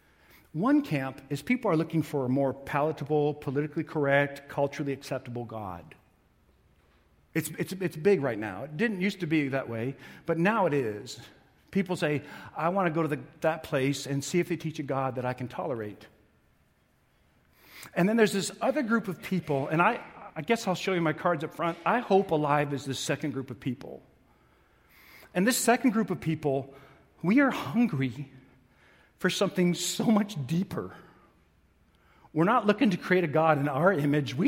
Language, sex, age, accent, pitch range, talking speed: English, male, 50-69, American, 145-210 Hz, 185 wpm